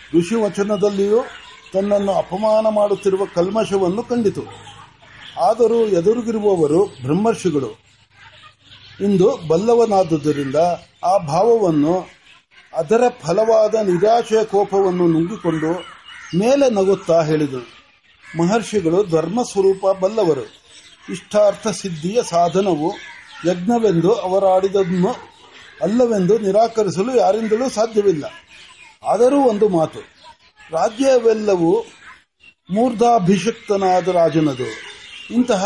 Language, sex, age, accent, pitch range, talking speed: Marathi, male, 60-79, native, 180-230 Hz, 35 wpm